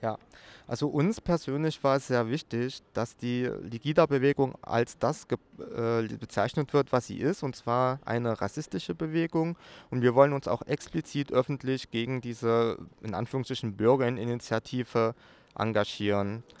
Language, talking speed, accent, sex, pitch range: German, 135 wpm, German, male, 115-140 Hz